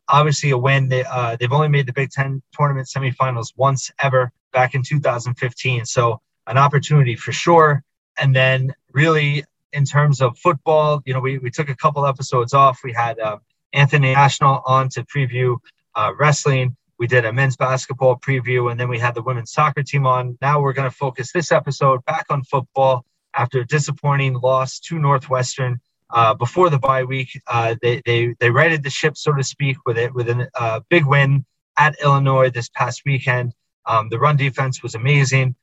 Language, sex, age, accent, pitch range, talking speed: English, male, 20-39, American, 125-145 Hz, 190 wpm